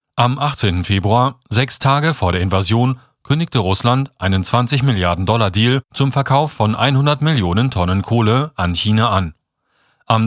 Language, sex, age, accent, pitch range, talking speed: German, male, 40-59, German, 100-135 Hz, 135 wpm